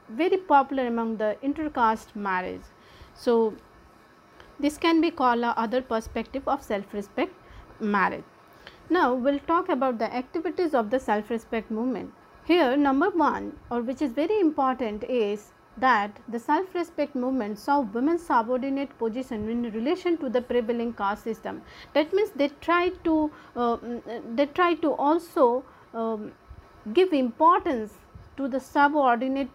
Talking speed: 135 wpm